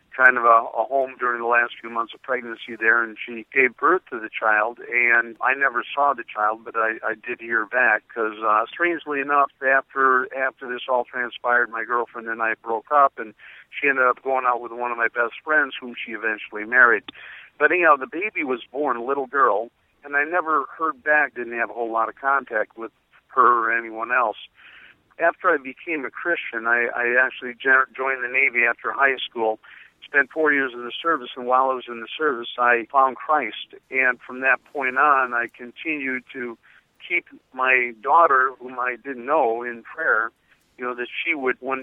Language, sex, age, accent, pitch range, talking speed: English, male, 50-69, American, 120-135 Hz, 205 wpm